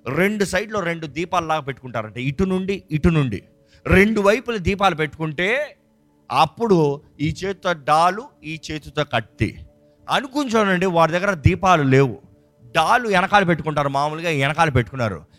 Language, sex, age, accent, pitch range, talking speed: Telugu, male, 30-49, native, 140-195 Hz, 120 wpm